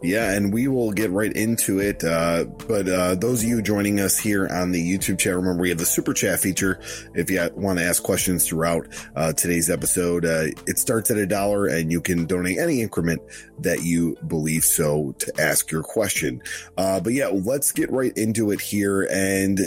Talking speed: 210 wpm